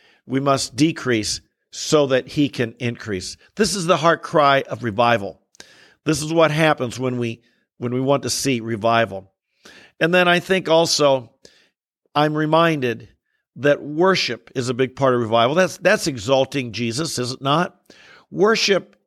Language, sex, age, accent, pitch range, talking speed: English, male, 50-69, American, 130-170 Hz, 155 wpm